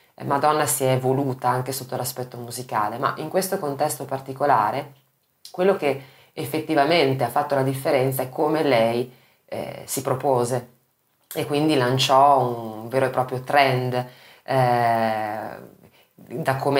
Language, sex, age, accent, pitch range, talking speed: Italian, female, 20-39, native, 125-140 Hz, 130 wpm